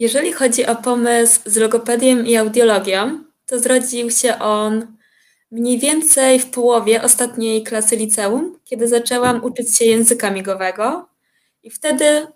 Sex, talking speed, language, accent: female, 130 wpm, Polish, native